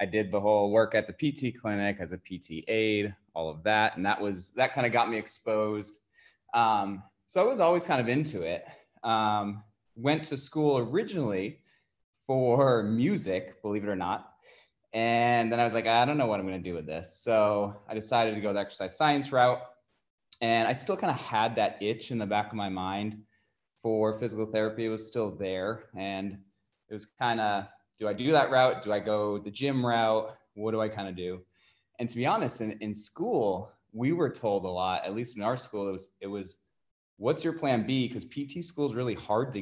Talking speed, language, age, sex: 220 wpm, English, 20-39, male